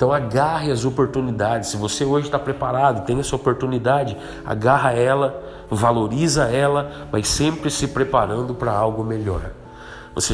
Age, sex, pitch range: 40-59, male, 115-140 Hz